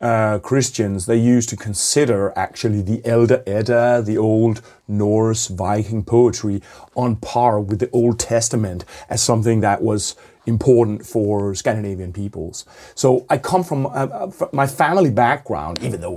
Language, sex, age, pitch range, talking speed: English, male, 30-49, 105-125 Hz, 150 wpm